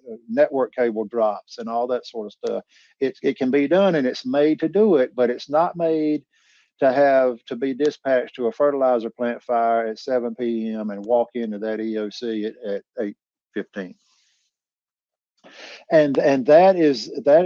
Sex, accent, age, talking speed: male, American, 50-69, 165 wpm